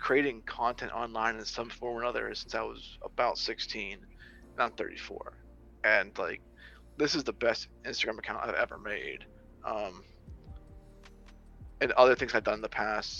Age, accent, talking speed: 20-39, American, 165 wpm